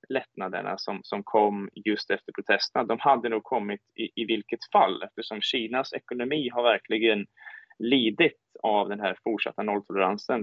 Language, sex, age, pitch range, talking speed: Swedish, male, 20-39, 105-140 Hz, 150 wpm